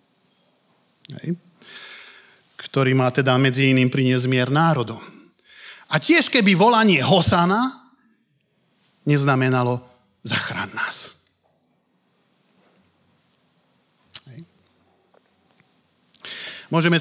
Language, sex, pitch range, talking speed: Slovak, male, 135-185 Hz, 60 wpm